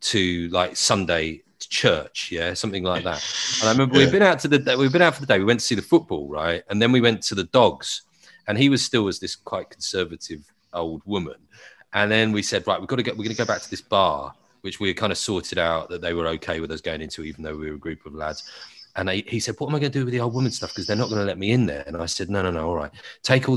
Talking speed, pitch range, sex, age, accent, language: 310 wpm, 90-125 Hz, male, 30-49, British, English